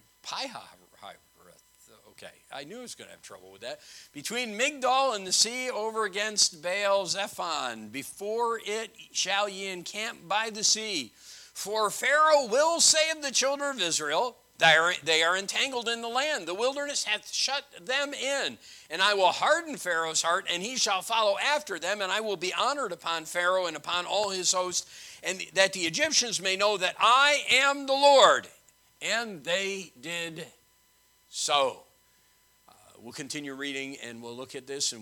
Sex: male